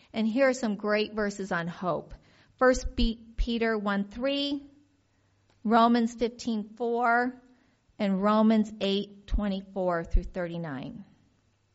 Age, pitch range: 40-59, 205-265 Hz